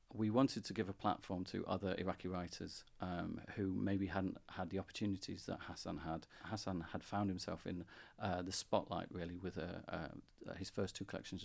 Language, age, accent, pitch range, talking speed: English, 40-59, British, 95-105 Hz, 185 wpm